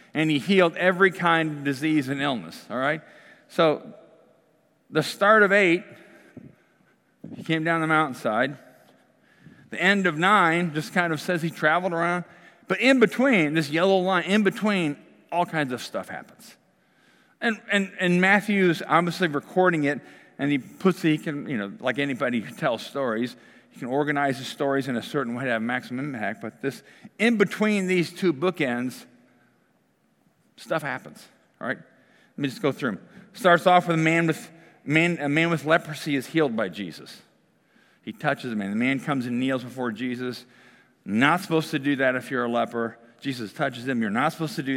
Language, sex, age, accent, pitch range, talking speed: English, male, 50-69, American, 140-185 Hz, 180 wpm